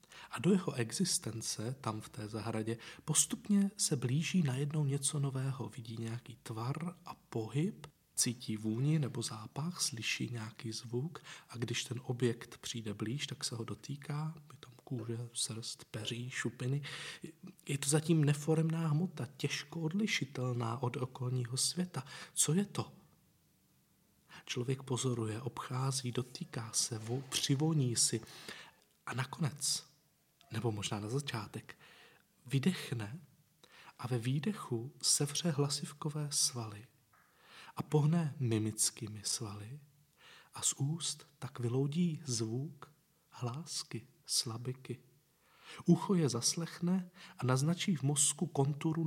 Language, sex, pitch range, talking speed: Czech, male, 120-155 Hz, 115 wpm